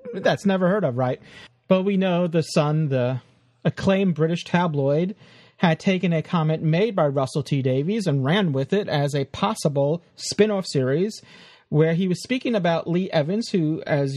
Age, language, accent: 30-49, English, American